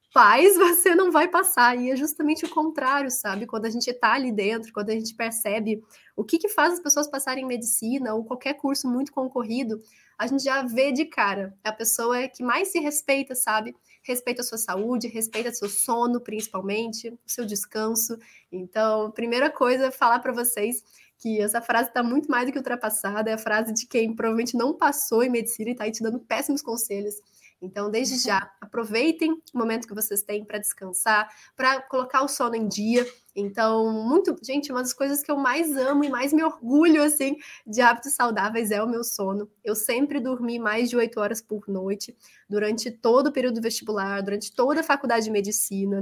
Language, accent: Portuguese, Brazilian